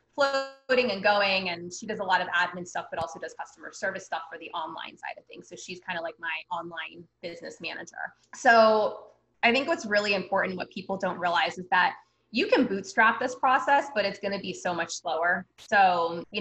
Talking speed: 210 wpm